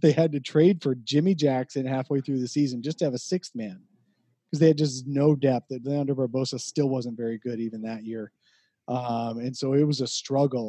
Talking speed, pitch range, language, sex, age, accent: 225 wpm, 120-145 Hz, English, male, 30-49, American